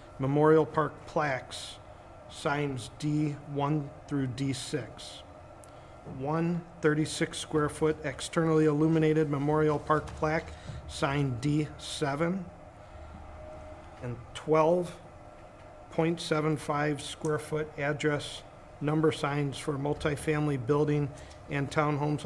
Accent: American